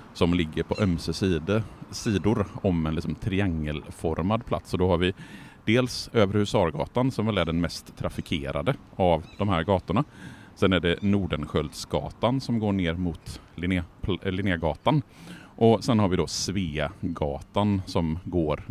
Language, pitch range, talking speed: Swedish, 80-100 Hz, 140 wpm